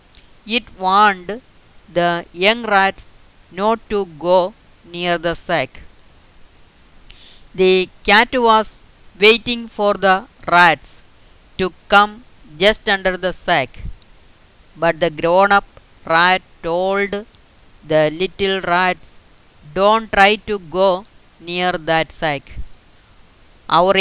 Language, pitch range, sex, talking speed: Malayalam, 170-210 Hz, female, 100 wpm